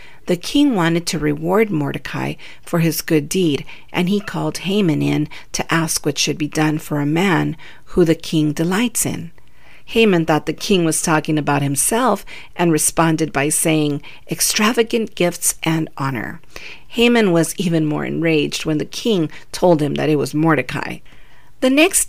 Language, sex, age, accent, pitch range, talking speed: English, female, 50-69, American, 150-180 Hz, 165 wpm